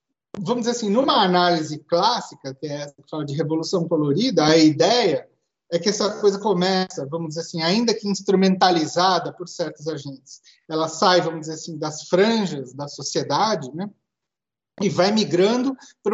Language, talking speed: Portuguese, 155 wpm